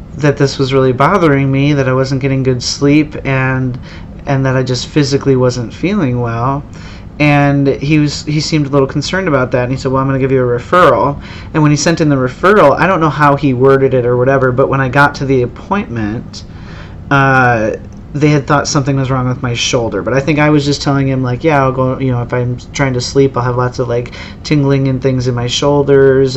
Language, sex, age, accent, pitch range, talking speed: English, male, 30-49, American, 120-140 Hz, 240 wpm